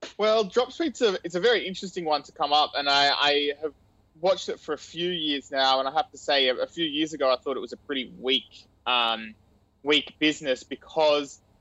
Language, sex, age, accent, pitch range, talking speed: English, male, 20-39, Australian, 125-155 Hz, 220 wpm